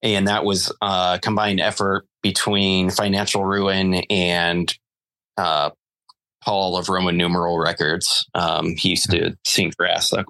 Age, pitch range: 30-49, 90-110 Hz